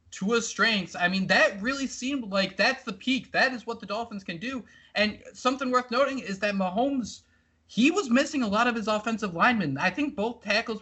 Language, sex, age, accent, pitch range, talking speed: English, male, 20-39, American, 185-235 Hz, 210 wpm